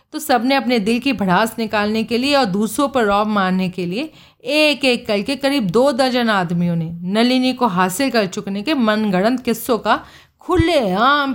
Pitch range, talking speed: 185-260 Hz, 190 wpm